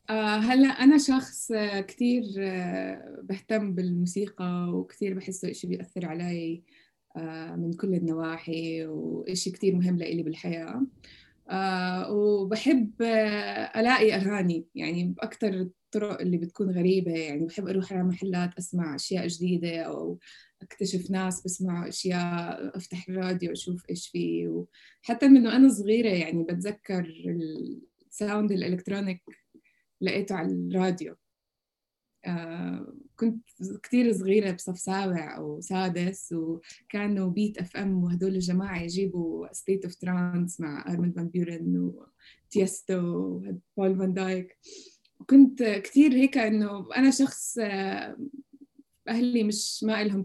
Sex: female